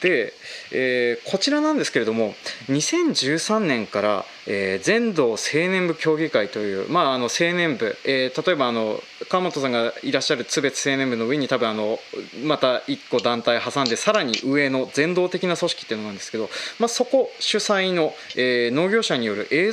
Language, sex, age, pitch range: Japanese, male, 20-39, 120-190 Hz